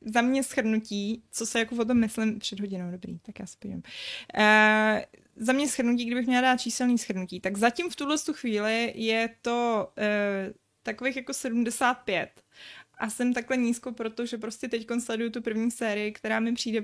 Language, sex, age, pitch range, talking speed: Czech, female, 20-39, 205-230 Hz, 175 wpm